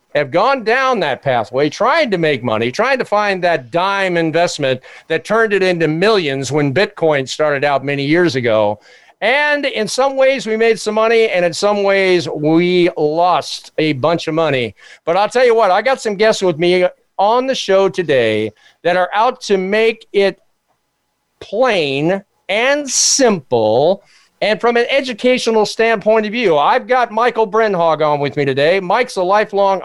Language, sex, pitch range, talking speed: English, male, 155-215 Hz, 175 wpm